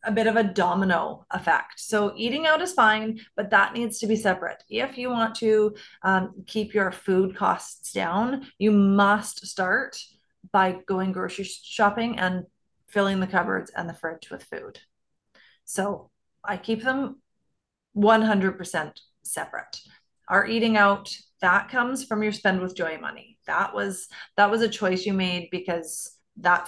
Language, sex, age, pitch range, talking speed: English, female, 30-49, 185-225 Hz, 155 wpm